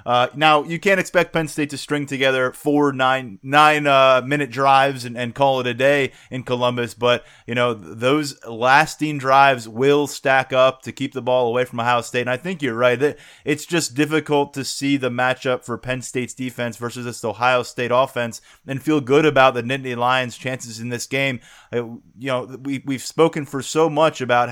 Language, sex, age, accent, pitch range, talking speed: English, male, 20-39, American, 125-150 Hz, 210 wpm